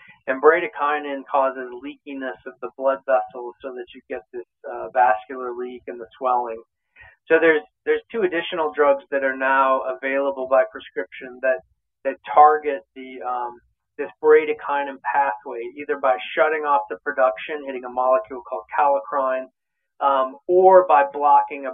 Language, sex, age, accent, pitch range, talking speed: English, male, 40-59, American, 120-140 Hz, 150 wpm